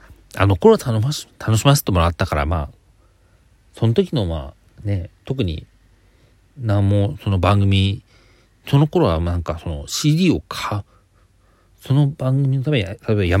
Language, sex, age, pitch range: Japanese, male, 40-59, 90-120 Hz